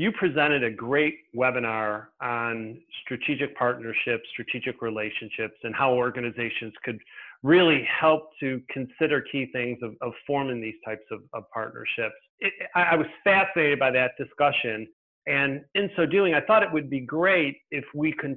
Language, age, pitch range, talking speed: English, 40-59, 125-155 Hz, 155 wpm